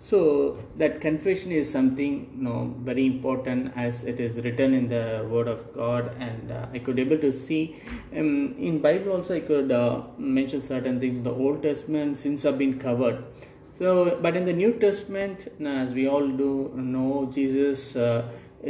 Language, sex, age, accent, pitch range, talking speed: English, male, 20-39, Indian, 125-145 Hz, 180 wpm